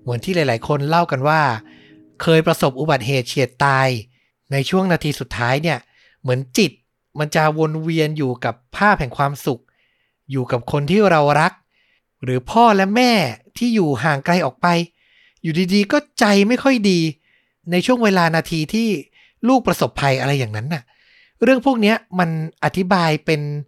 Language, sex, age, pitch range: Thai, male, 60-79, 130-175 Hz